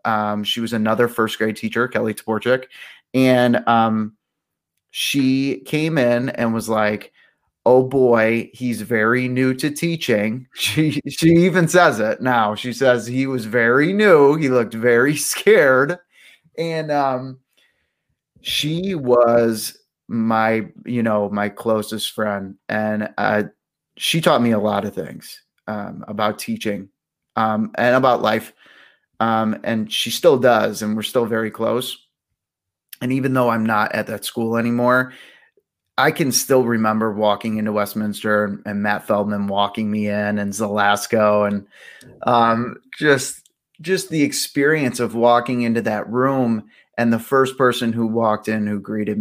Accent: American